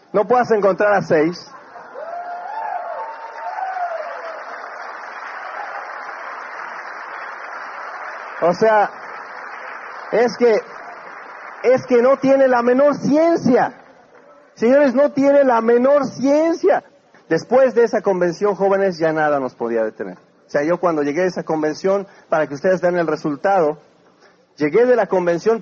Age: 50-69